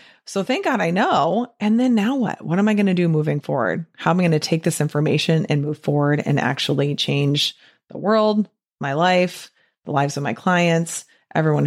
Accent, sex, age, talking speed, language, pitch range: American, female, 30-49, 210 wpm, English, 150-190 Hz